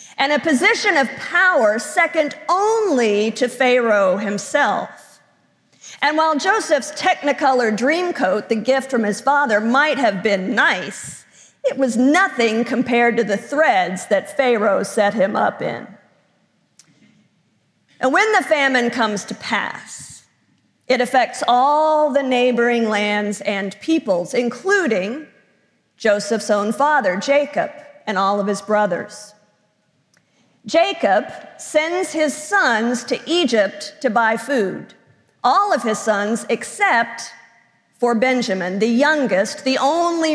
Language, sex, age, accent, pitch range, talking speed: English, female, 50-69, American, 220-300 Hz, 125 wpm